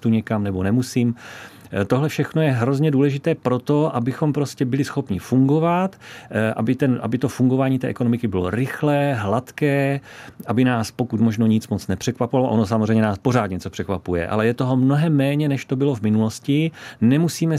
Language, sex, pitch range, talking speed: Czech, male, 110-140 Hz, 165 wpm